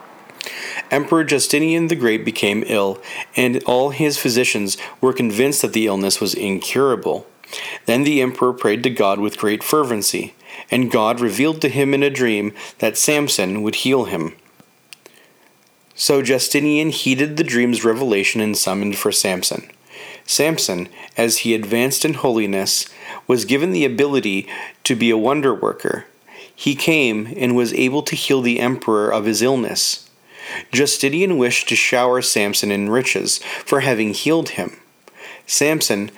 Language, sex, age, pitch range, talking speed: English, male, 40-59, 110-140 Hz, 145 wpm